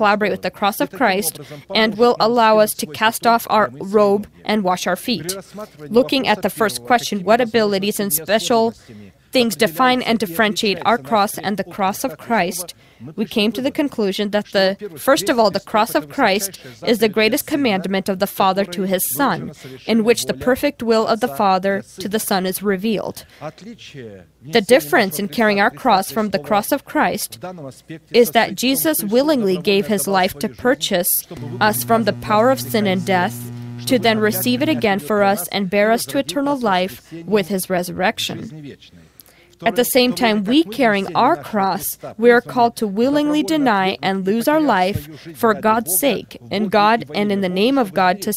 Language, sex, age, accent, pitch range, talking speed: English, female, 20-39, American, 195-235 Hz, 185 wpm